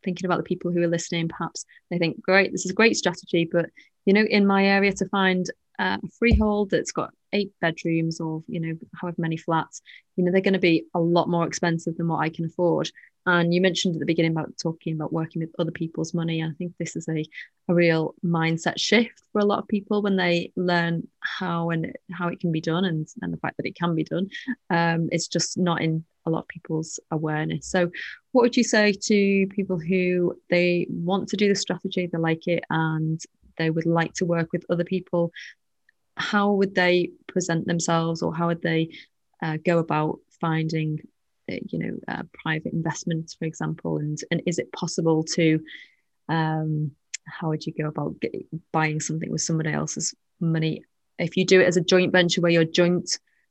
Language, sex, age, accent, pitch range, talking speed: English, female, 20-39, British, 160-185 Hz, 210 wpm